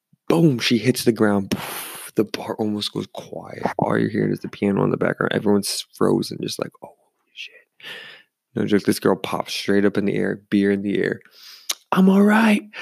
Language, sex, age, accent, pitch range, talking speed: English, male, 20-39, American, 100-130 Hz, 195 wpm